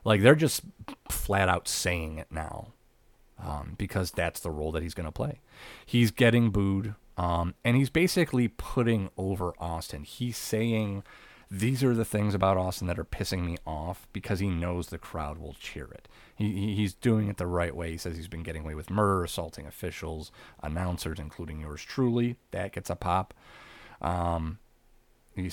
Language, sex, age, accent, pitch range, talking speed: English, male, 30-49, American, 85-105 Hz, 180 wpm